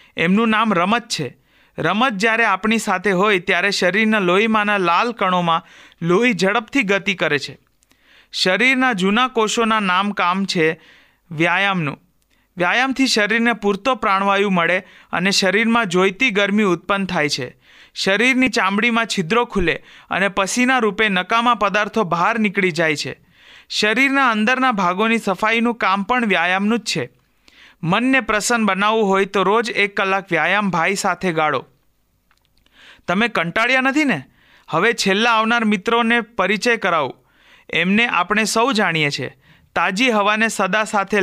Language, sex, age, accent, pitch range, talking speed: Gujarati, male, 40-59, native, 185-230 Hz, 130 wpm